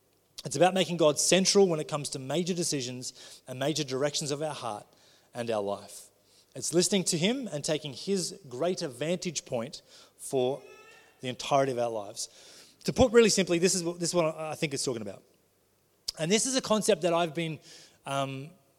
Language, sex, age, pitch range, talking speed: English, male, 30-49, 130-175 Hz, 190 wpm